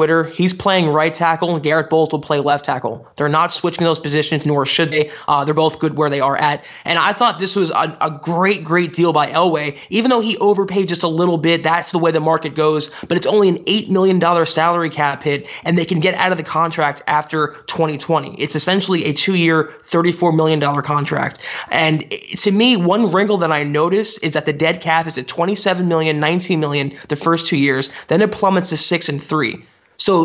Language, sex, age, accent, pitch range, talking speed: English, male, 20-39, American, 155-180 Hz, 220 wpm